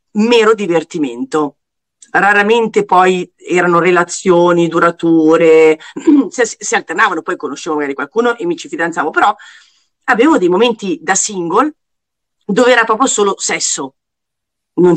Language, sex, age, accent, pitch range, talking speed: Italian, female, 40-59, native, 175-240 Hz, 120 wpm